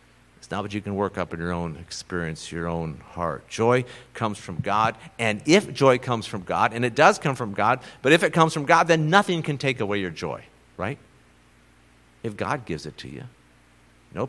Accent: American